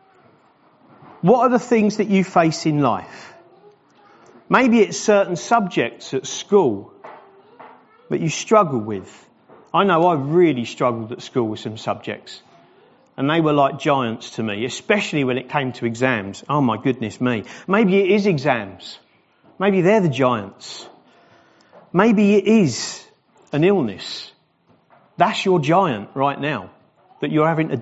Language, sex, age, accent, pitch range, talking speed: English, male, 40-59, British, 135-215 Hz, 145 wpm